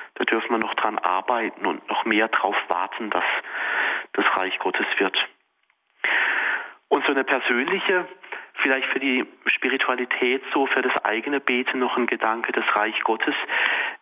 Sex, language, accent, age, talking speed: male, German, German, 40-59, 150 wpm